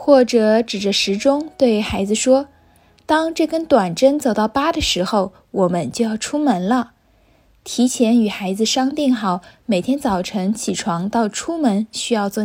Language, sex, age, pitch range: Chinese, female, 20-39, 205-260 Hz